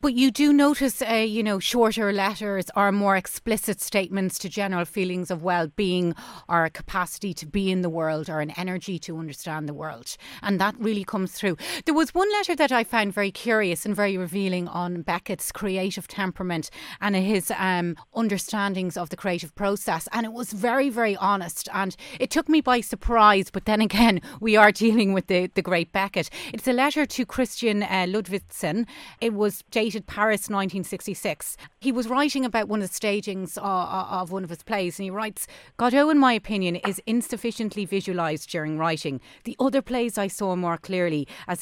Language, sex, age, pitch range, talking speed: English, female, 30-49, 180-220 Hz, 190 wpm